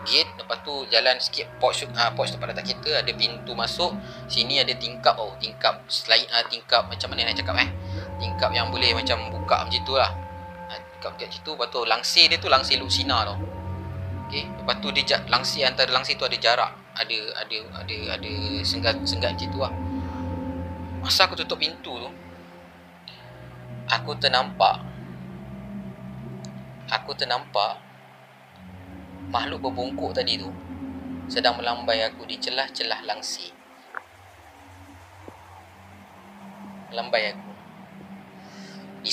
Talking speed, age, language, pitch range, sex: 130 wpm, 20-39, Malay, 85-125 Hz, male